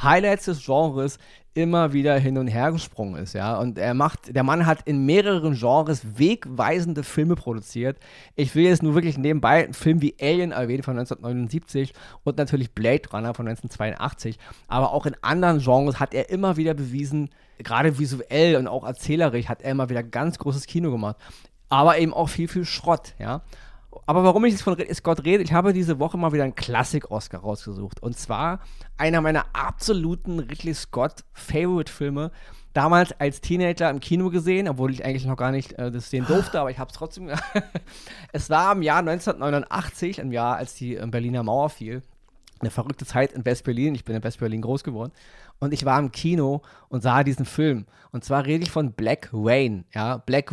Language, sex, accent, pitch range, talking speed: German, male, German, 125-160 Hz, 185 wpm